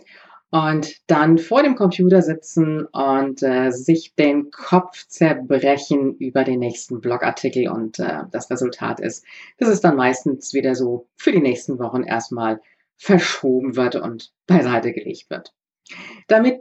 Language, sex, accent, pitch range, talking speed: German, female, German, 125-185 Hz, 140 wpm